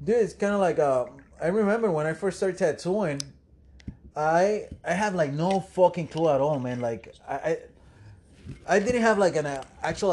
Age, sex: 30-49, male